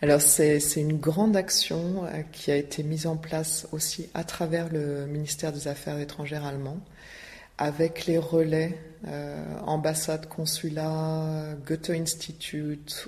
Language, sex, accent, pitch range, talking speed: French, female, French, 145-170 Hz, 135 wpm